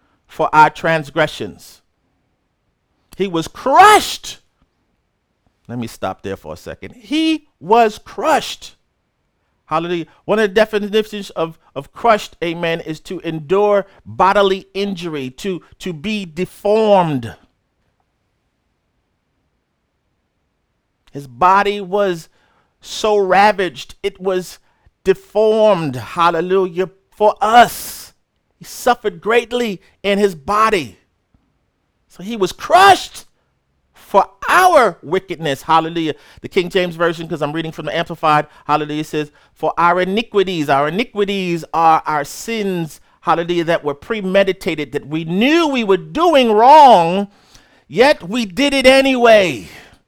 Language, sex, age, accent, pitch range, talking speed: English, male, 50-69, American, 160-220 Hz, 115 wpm